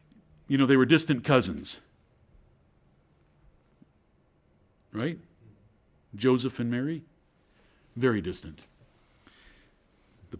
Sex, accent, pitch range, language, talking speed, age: male, American, 120-170 Hz, English, 75 wpm, 50-69